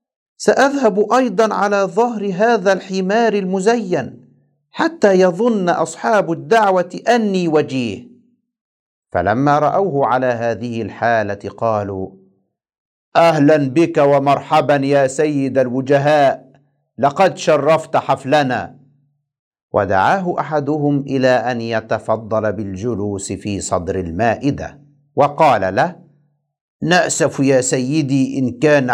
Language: Arabic